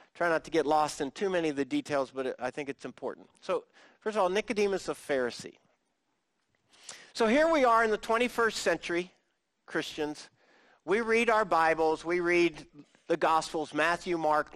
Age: 50-69